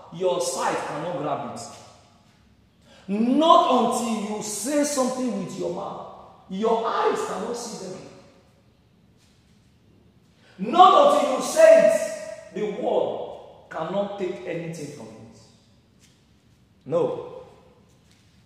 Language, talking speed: English, 100 wpm